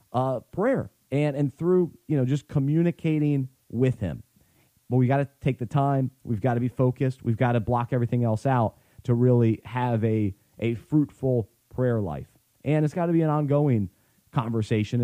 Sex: male